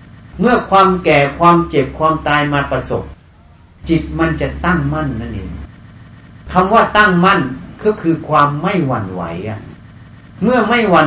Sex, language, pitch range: male, Thai, 125-185 Hz